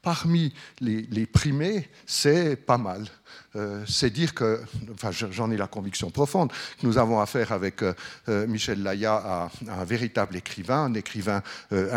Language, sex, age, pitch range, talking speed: French, male, 60-79, 110-145 Hz, 165 wpm